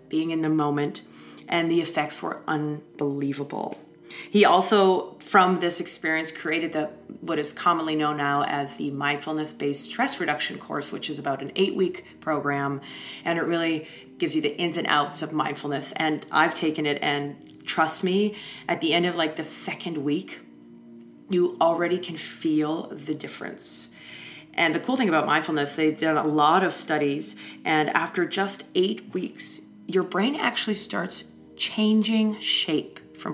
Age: 30-49